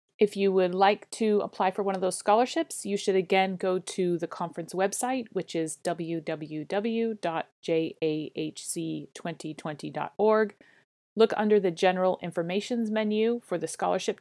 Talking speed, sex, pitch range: 130 wpm, female, 165-210 Hz